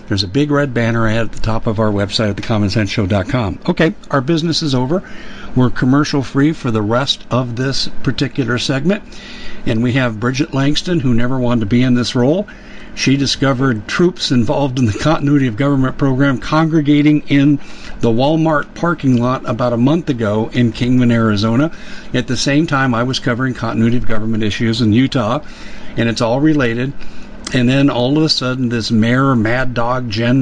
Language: English